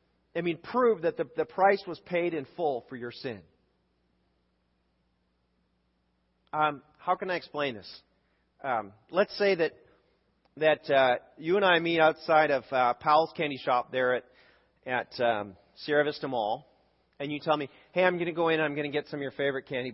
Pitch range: 100-155 Hz